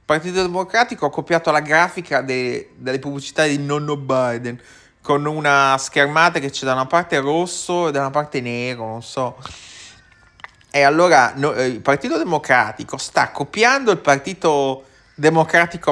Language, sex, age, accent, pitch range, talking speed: Italian, male, 30-49, native, 130-165 Hz, 150 wpm